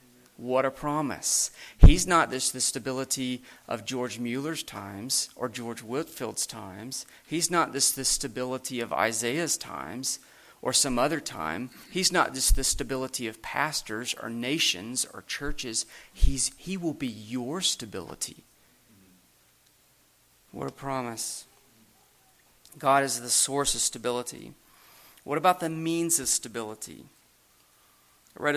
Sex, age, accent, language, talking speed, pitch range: male, 40-59, American, English, 130 wpm, 125-150 Hz